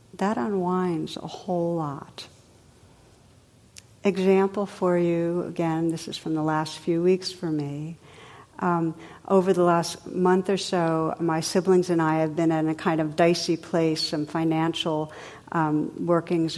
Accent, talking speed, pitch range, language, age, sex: American, 150 wpm, 160-195 Hz, English, 60-79, female